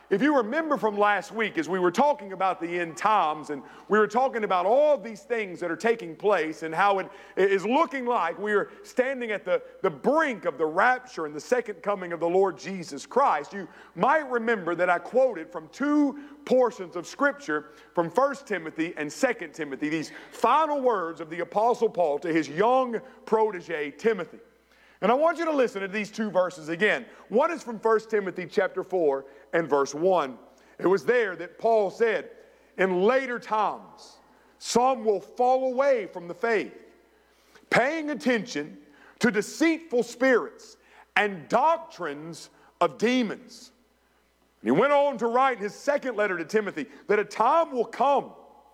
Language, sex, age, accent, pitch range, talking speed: English, male, 50-69, American, 180-270 Hz, 175 wpm